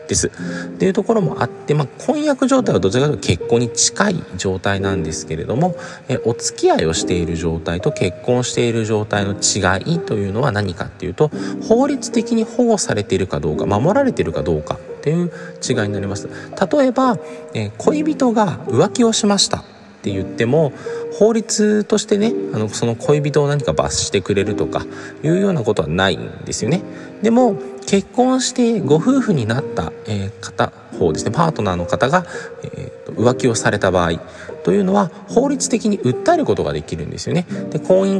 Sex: male